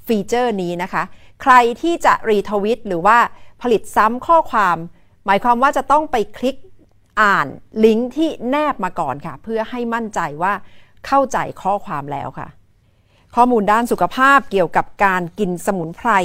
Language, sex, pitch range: Thai, female, 180-255 Hz